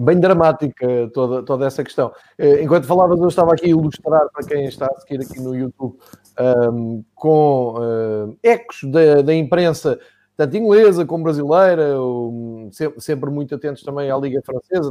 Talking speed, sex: 150 wpm, male